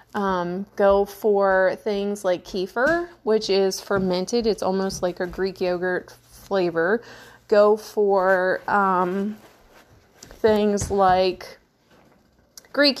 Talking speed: 100 wpm